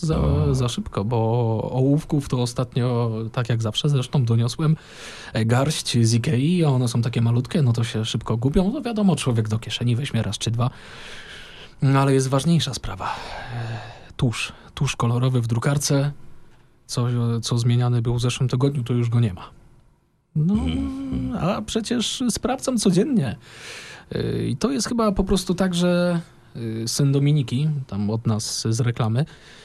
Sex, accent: male, native